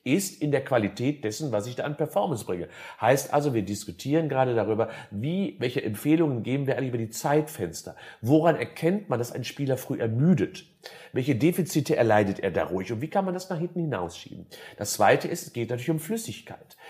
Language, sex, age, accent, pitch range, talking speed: German, male, 40-59, German, 120-165 Hz, 200 wpm